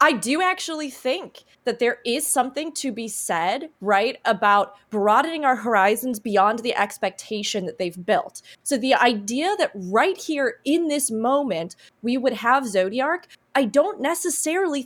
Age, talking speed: 20-39, 155 wpm